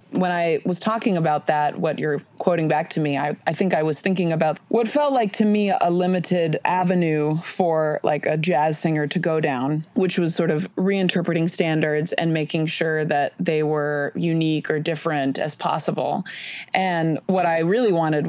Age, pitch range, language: 30-49, 155-185 Hz, English